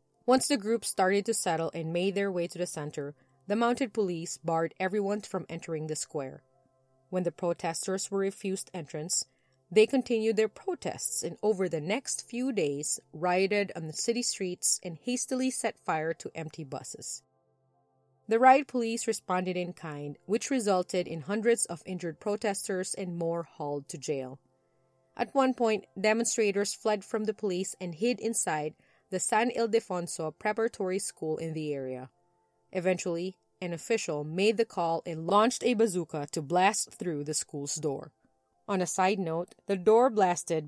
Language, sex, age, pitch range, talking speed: English, female, 30-49, 160-215 Hz, 160 wpm